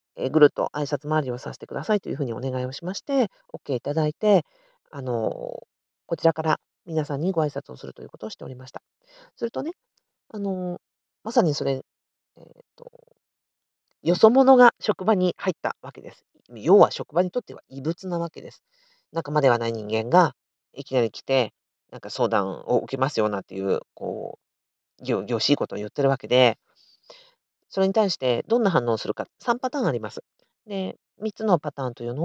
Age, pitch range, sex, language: 40-59, 135-220 Hz, female, Japanese